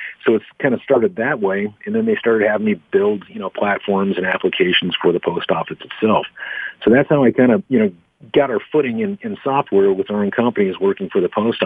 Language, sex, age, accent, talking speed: English, male, 50-69, American, 235 wpm